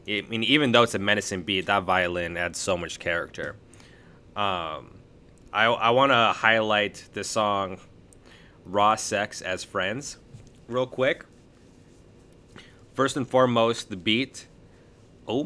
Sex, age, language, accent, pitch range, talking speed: male, 20-39, English, American, 100-125 Hz, 130 wpm